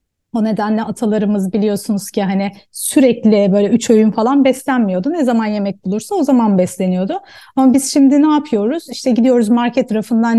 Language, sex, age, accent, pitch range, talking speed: Turkish, female, 30-49, native, 205-245 Hz, 160 wpm